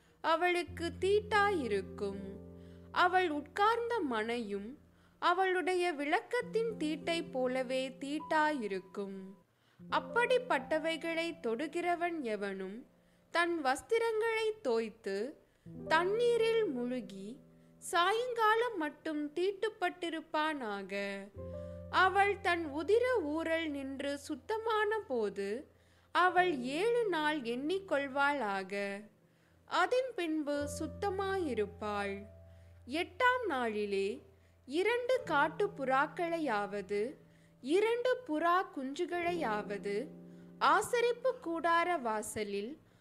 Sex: female